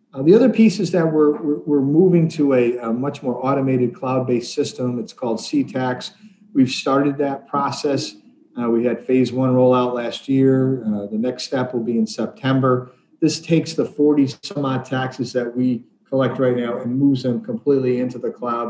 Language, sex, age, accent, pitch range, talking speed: English, male, 40-59, American, 125-175 Hz, 195 wpm